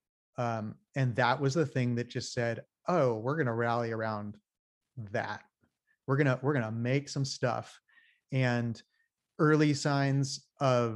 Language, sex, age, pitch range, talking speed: English, male, 30-49, 120-145 Hz, 140 wpm